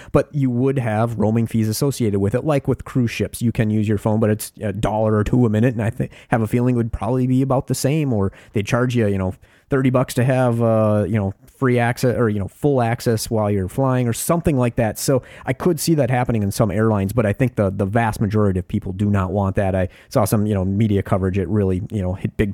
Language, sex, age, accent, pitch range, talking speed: English, male, 30-49, American, 105-135 Hz, 265 wpm